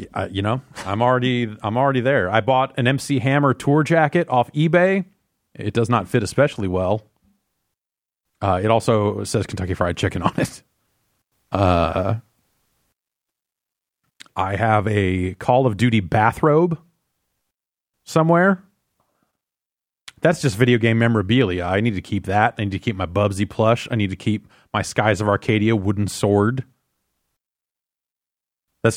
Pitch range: 100-130 Hz